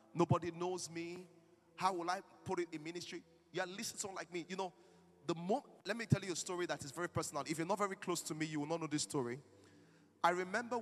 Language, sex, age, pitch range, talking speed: English, male, 30-49, 155-225 Hz, 255 wpm